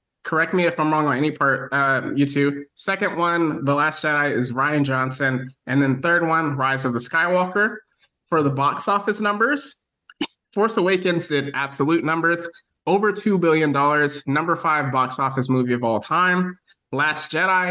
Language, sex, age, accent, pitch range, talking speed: English, male, 20-39, American, 135-170 Hz, 170 wpm